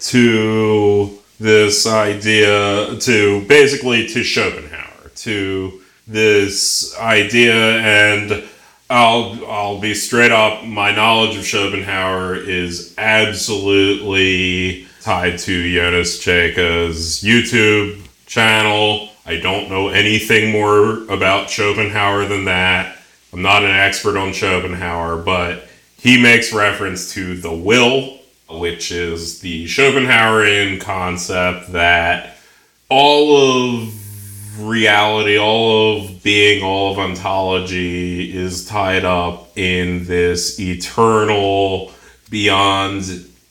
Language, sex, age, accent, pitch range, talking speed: English, male, 30-49, American, 90-110 Hz, 100 wpm